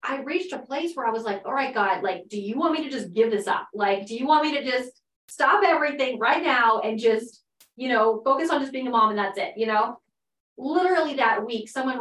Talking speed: 255 wpm